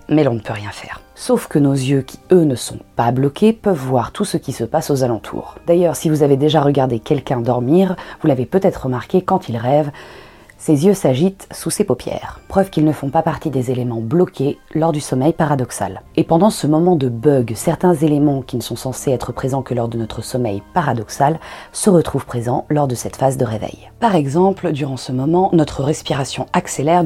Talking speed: 215 wpm